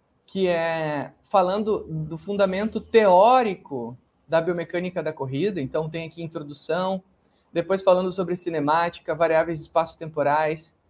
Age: 20-39